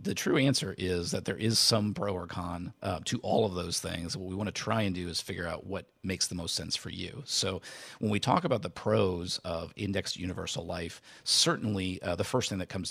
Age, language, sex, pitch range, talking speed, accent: 40-59, English, male, 85-100 Hz, 240 wpm, American